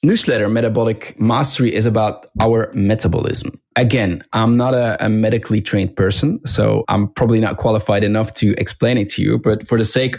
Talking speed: 175 wpm